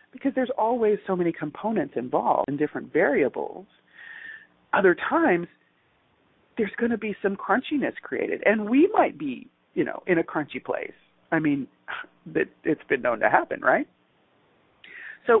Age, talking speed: 40-59, 150 wpm